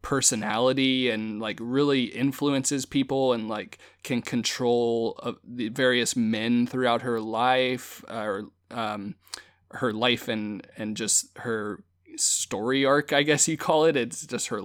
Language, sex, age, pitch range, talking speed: English, male, 20-39, 115-135 Hz, 150 wpm